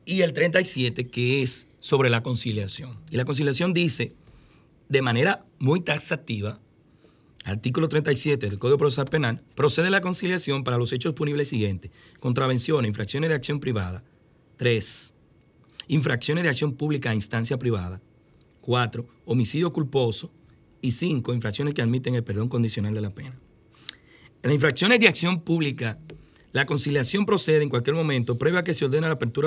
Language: Spanish